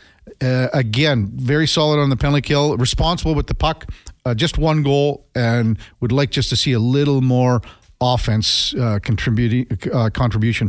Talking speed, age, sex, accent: 170 wpm, 50-69, male, American